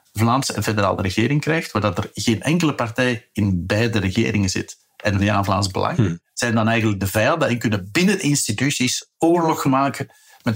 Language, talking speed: Dutch, 180 wpm